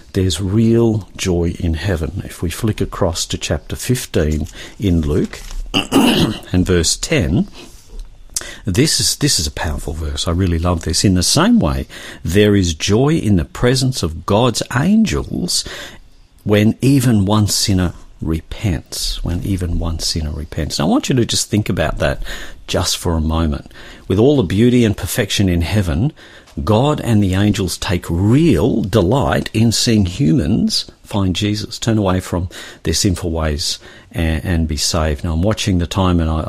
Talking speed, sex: 165 wpm, male